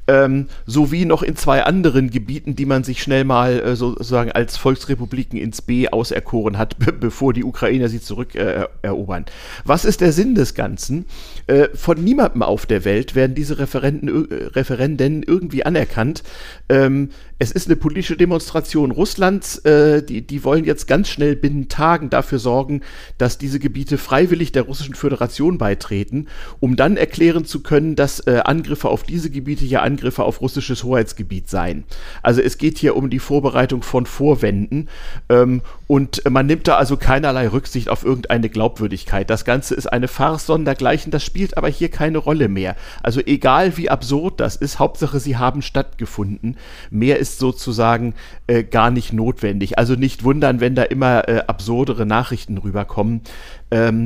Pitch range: 115-145 Hz